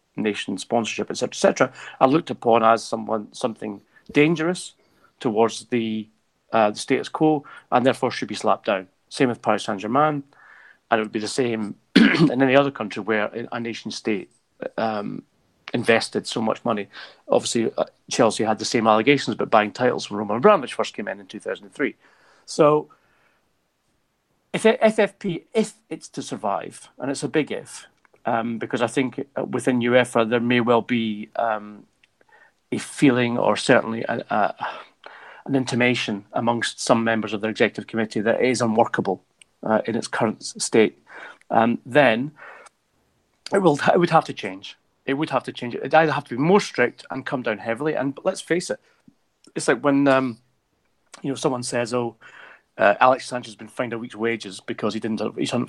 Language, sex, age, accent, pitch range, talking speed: English, male, 40-59, British, 110-135 Hz, 175 wpm